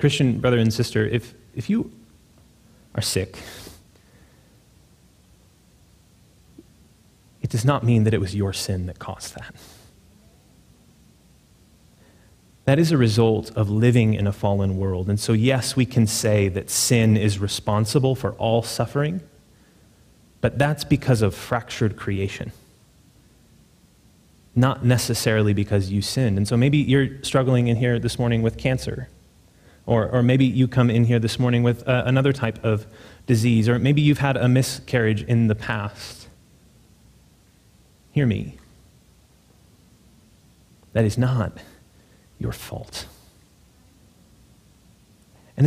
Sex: male